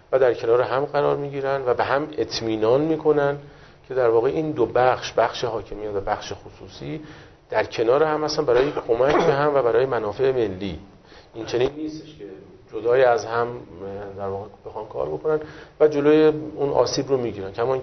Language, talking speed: Persian, 190 wpm